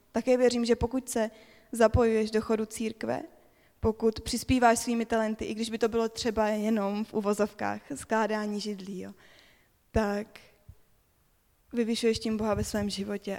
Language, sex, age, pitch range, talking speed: Czech, female, 20-39, 205-230 Hz, 145 wpm